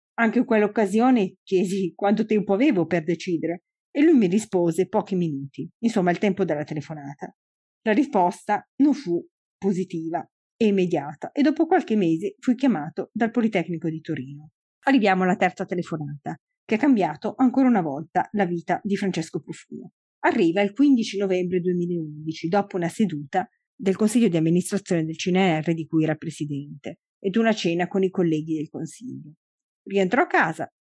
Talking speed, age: 160 wpm, 40-59